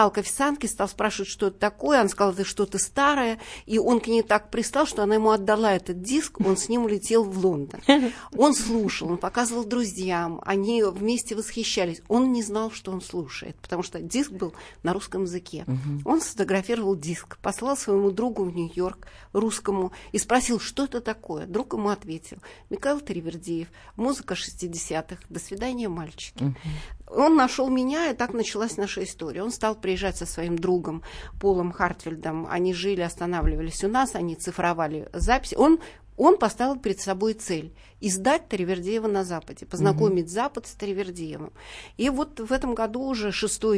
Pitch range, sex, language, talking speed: 180-225 Hz, female, Russian, 165 wpm